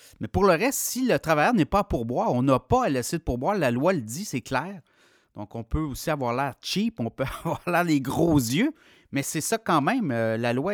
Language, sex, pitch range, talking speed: French, male, 120-155 Hz, 255 wpm